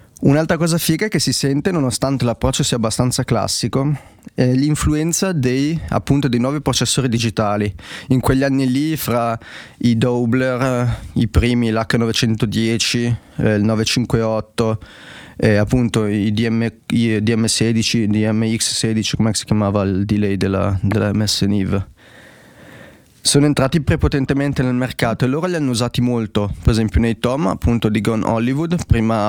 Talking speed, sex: 140 wpm, male